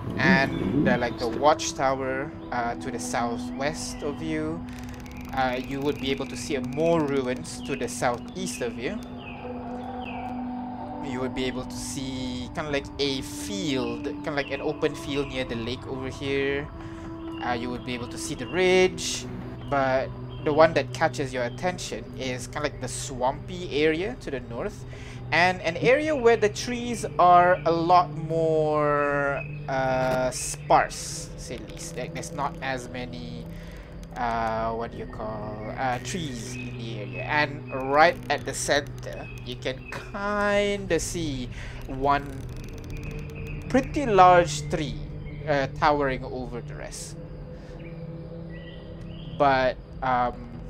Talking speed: 145 wpm